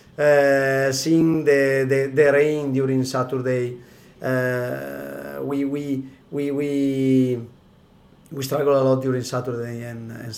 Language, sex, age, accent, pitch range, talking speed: English, male, 30-49, Italian, 125-145 Hz, 120 wpm